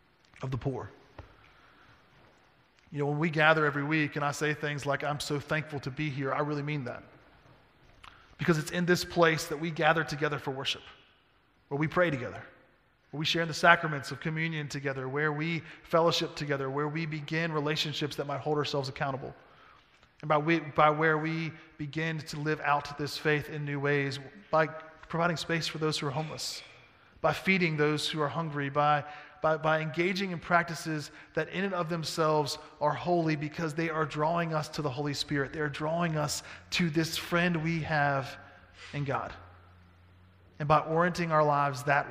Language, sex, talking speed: English, male, 185 wpm